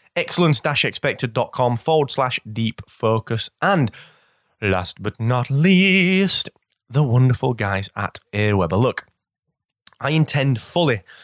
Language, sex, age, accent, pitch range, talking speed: English, male, 20-39, British, 110-150 Hz, 100 wpm